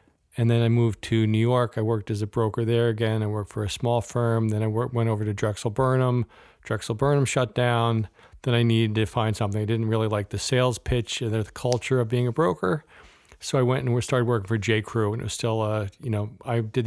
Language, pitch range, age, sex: English, 110-125 Hz, 40-59, male